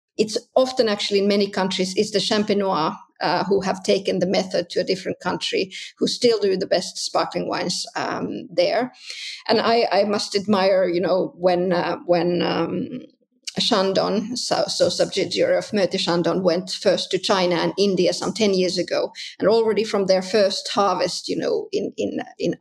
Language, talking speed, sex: English, 175 wpm, female